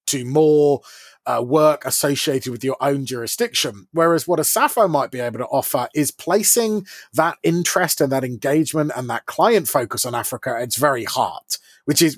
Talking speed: 180 wpm